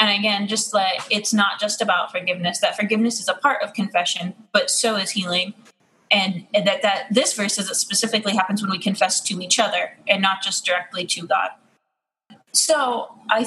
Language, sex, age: English, female, 20-39